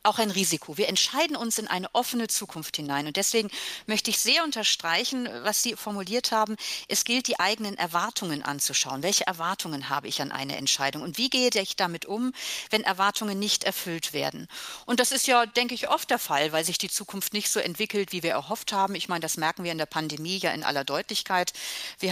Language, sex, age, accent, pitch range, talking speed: German, female, 40-59, German, 175-240 Hz, 210 wpm